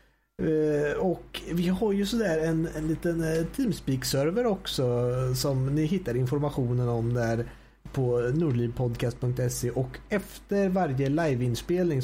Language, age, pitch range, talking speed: Swedish, 30-49, 125-195 Hz, 120 wpm